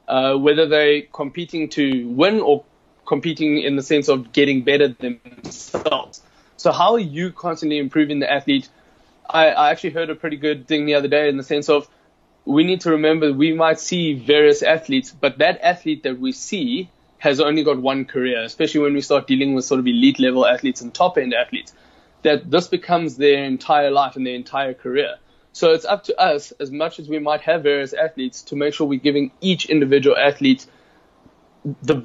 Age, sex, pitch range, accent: 20-39, male, 140-170 Hz, South African